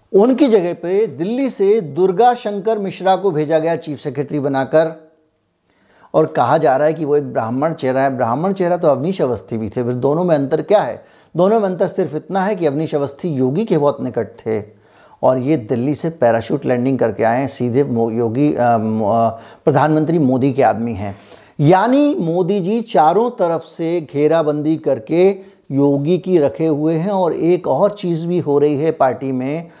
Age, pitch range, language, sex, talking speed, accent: 50-69, 135-180 Hz, Hindi, male, 115 wpm, native